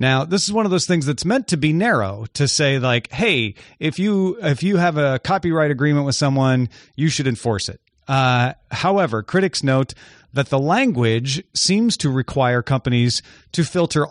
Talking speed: 185 wpm